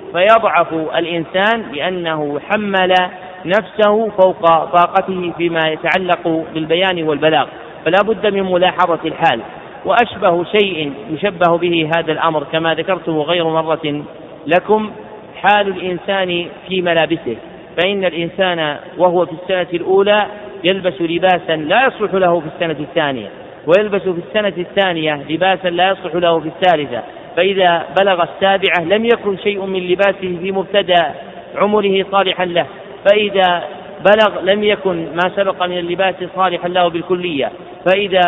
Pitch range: 165-195 Hz